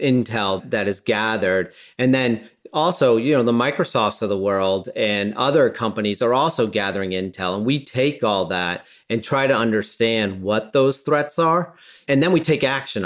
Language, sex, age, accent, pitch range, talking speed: English, male, 40-59, American, 105-130 Hz, 180 wpm